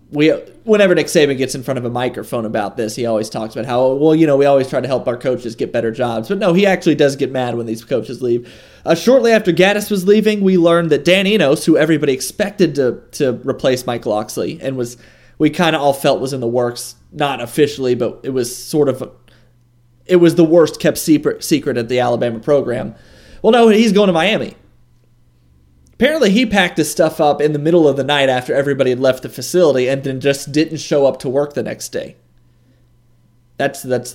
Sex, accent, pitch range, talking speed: male, American, 120-165 Hz, 225 wpm